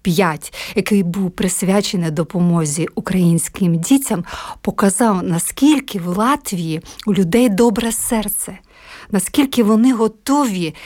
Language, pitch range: Ukrainian, 180-235 Hz